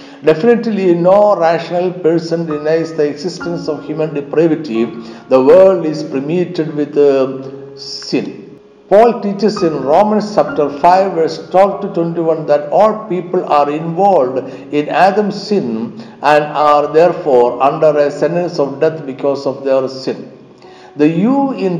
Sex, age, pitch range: male, 60-79, 145-190 Hz